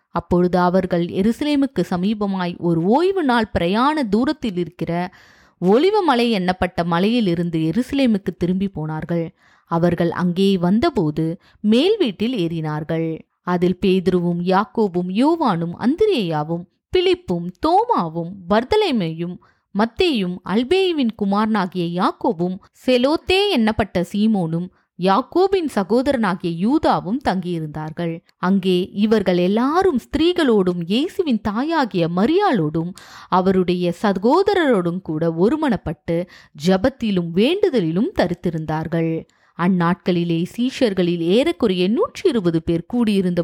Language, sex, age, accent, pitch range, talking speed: Tamil, female, 20-39, native, 175-250 Hz, 75 wpm